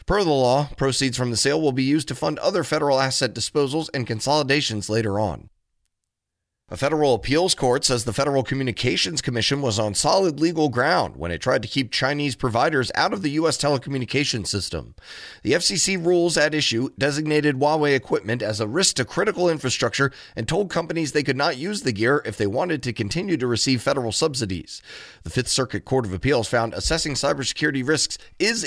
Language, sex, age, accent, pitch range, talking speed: English, male, 30-49, American, 120-155 Hz, 190 wpm